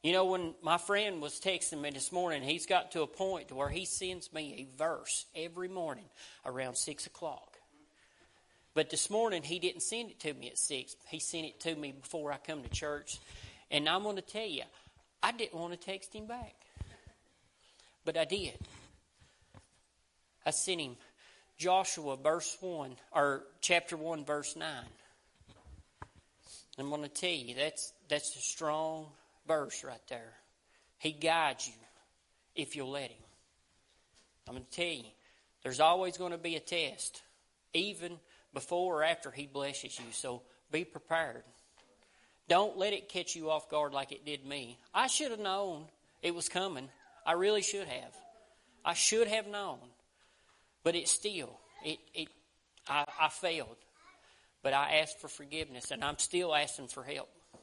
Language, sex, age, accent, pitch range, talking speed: English, male, 40-59, American, 140-180 Hz, 165 wpm